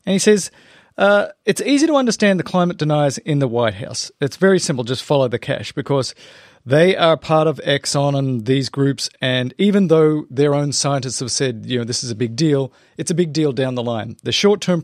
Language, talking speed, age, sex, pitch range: English, 220 wpm, 40-59, male, 130-170 Hz